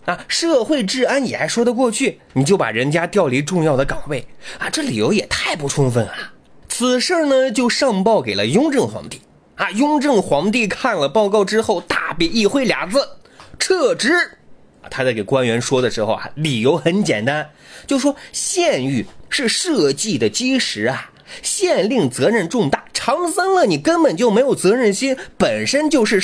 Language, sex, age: Chinese, male, 30-49